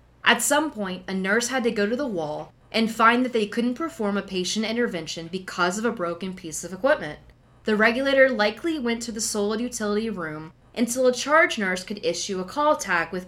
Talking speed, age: 210 wpm, 20-39